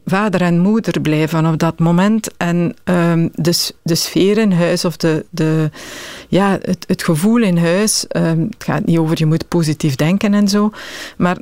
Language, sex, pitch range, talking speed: Dutch, female, 170-195 Hz, 170 wpm